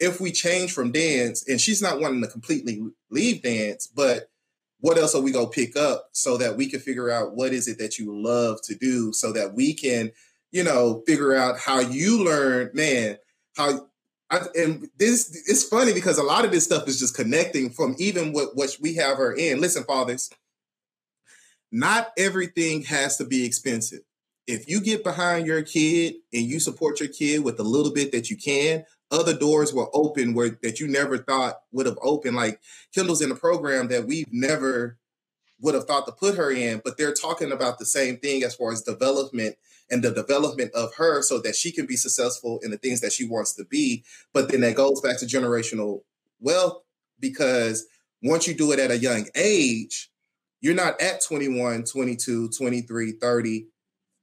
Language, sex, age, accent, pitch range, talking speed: English, male, 30-49, American, 120-165 Hz, 195 wpm